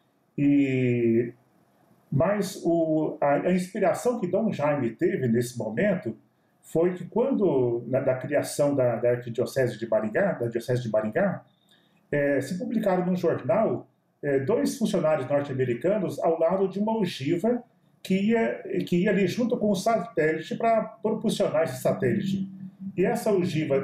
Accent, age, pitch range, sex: Brazilian, 40-59, 155-210 Hz, male